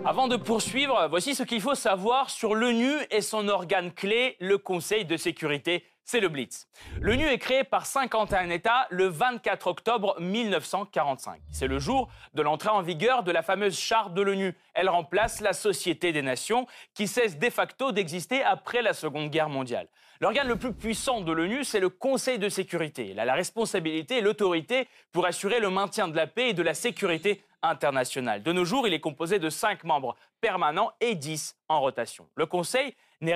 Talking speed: 190 wpm